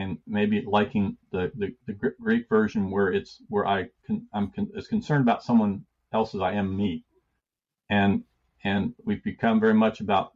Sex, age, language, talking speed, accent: male, 50-69, English, 180 wpm, American